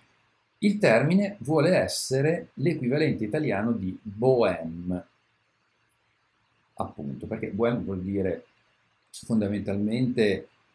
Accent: native